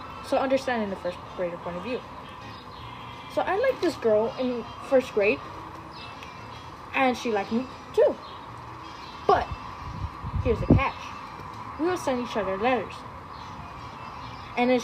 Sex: female